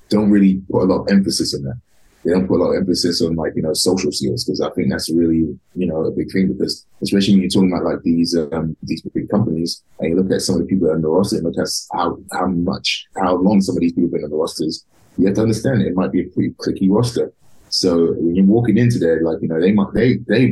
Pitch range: 85-100 Hz